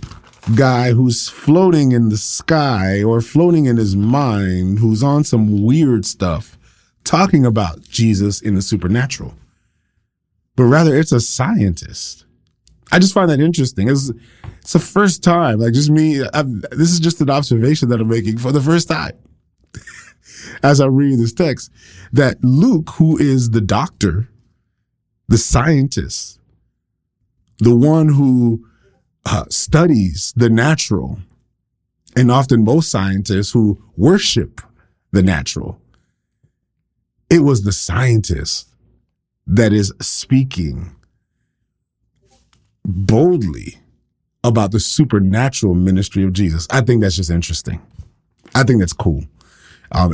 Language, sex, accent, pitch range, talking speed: English, male, American, 100-135 Hz, 125 wpm